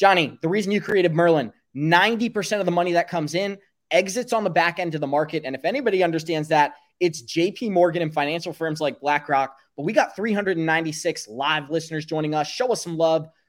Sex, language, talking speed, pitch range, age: male, English, 205 wpm, 145-185 Hz, 20-39